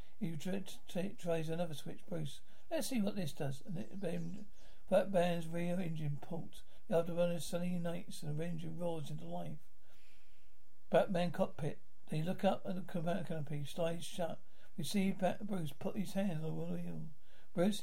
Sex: male